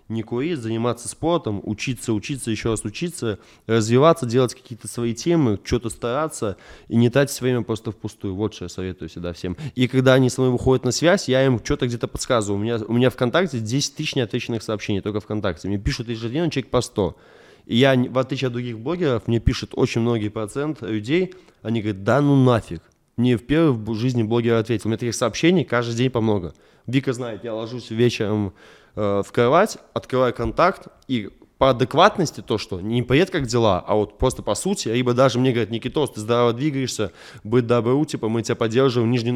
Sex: male